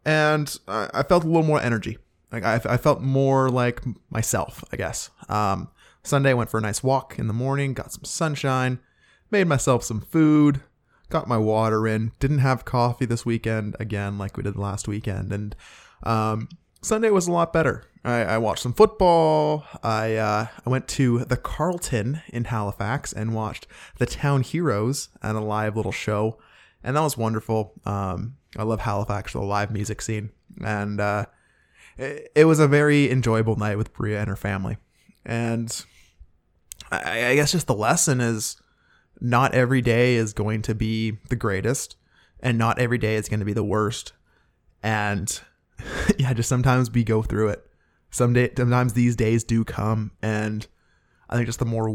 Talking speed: 175 wpm